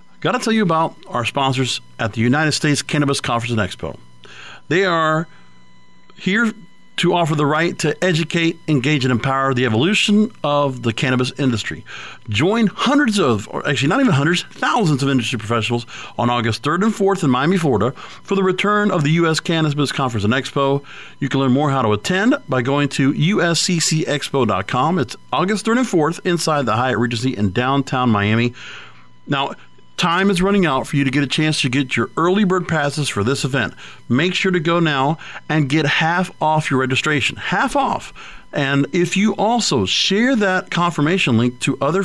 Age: 40-59